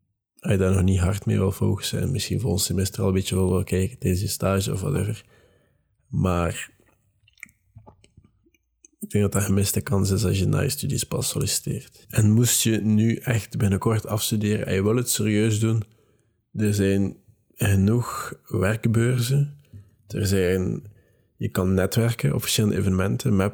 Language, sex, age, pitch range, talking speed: Dutch, male, 20-39, 95-110 Hz, 165 wpm